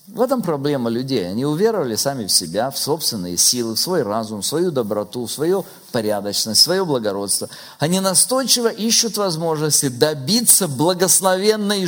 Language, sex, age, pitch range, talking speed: Russian, male, 50-69, 125-190 Hz, 145 wpm